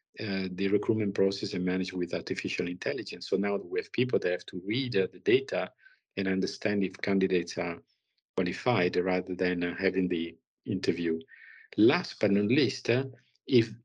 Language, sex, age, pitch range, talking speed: English, male, 50-69, 90-110 Hz, 170 wpm